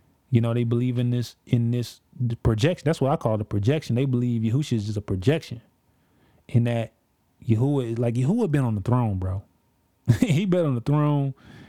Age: 20-39